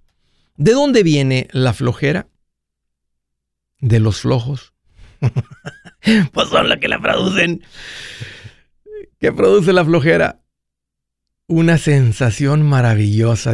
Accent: Mexican